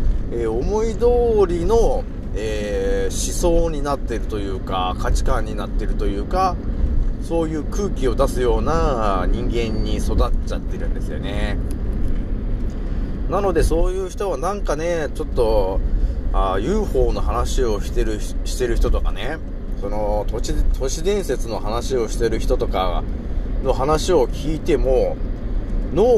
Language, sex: Japanese, male